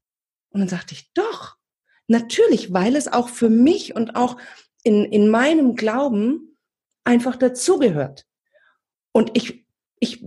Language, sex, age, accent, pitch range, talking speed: German, female, 40-59, German, 170-245 Hz, 130 wpm